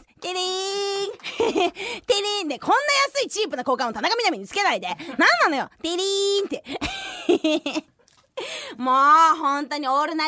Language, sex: Japanese, female